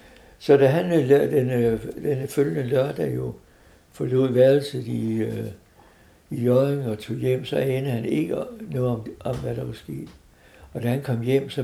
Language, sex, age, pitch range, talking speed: Danish, male, 60-79, 110-130 Hz, 165 wpm